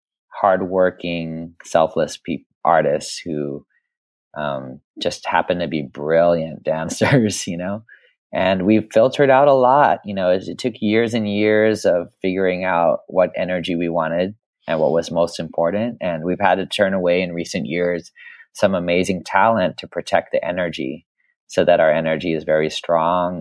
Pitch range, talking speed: 85-110 Hz, 160 wpm